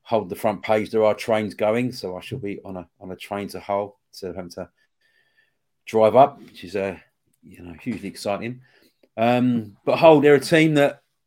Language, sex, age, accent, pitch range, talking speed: English, male, 30-49, British, 100-125 Hz, 215 wpm